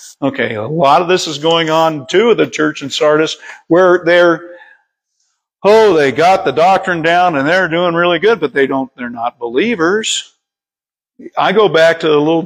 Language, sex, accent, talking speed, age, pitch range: English, male, American, 195 wpm, 50-69, 155-205 Hz